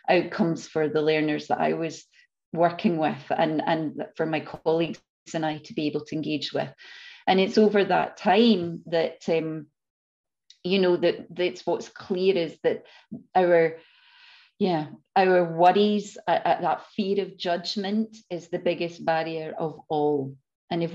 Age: 40-59